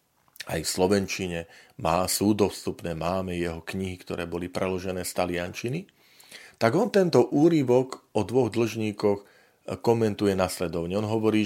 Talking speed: 130 wpm